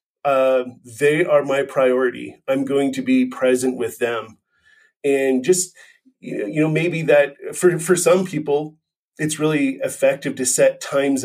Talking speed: 150 wpm